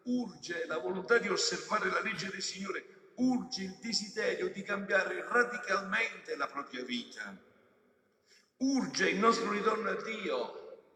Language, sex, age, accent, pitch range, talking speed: Italian, male, 50-69, native, 195-270 Hz, 130 wpm